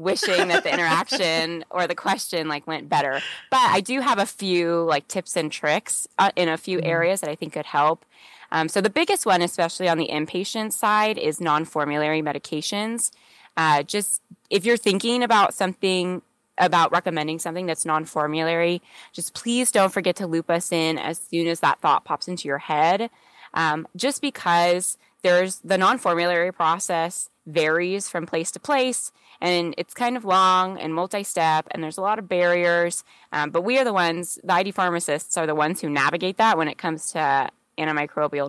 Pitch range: 160-190 Hz